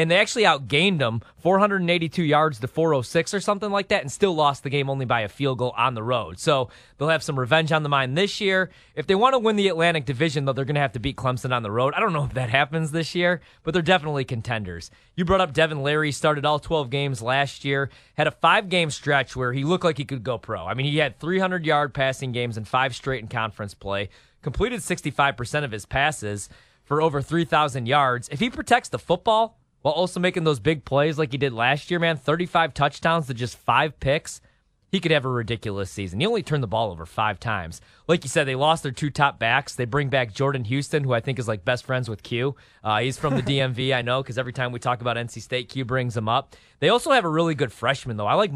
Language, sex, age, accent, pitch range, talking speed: English, male, 30-49, American, 125-160 Hz, 250 wpm